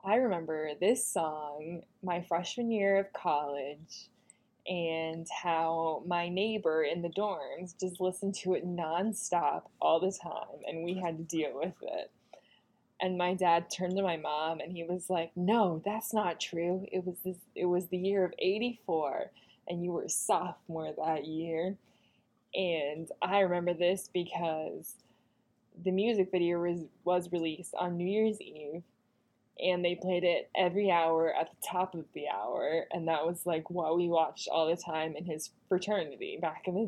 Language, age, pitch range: English, 20-39, 165-205 Hz